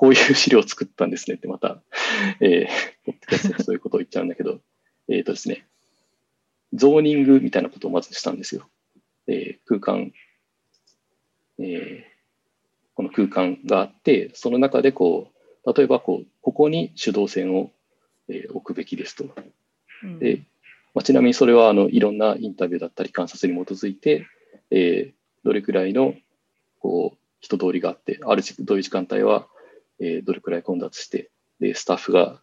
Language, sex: English, male